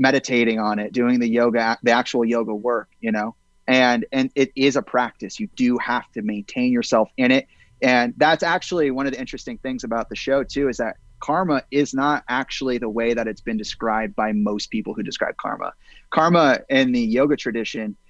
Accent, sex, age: American, male, 30-49